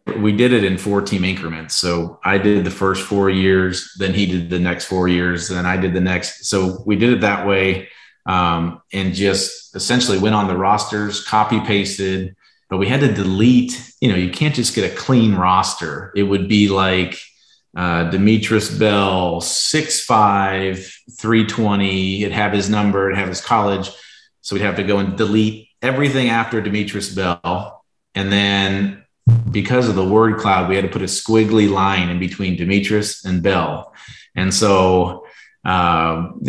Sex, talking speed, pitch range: male, 175 wpm, 95-105 Hz